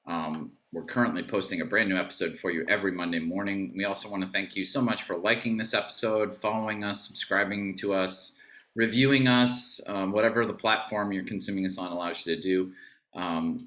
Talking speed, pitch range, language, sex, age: 200 wpm, 95-115 Hz, English, male, 30-49